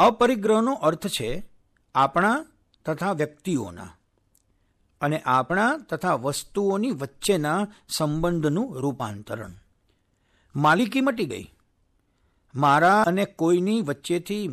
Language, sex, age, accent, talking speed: Gujarati, male, 60-79, native, 85 wpm